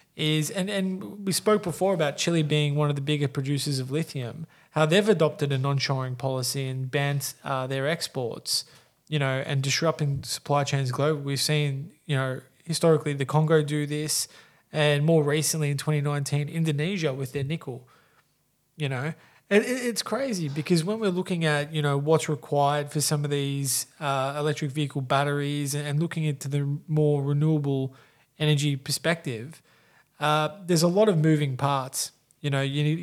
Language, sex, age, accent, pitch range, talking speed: English, male, 20-39, Australian, 135-155 Hz, 175 wpm